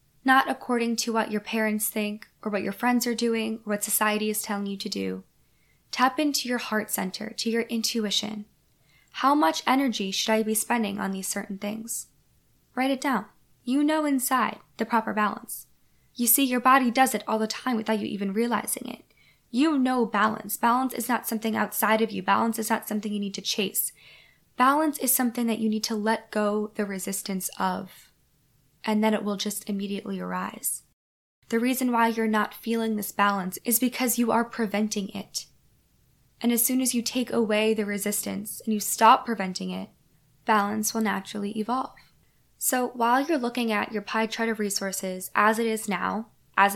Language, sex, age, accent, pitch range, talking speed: English, female, 10-29, American, 205-235 Hz, 190 wpm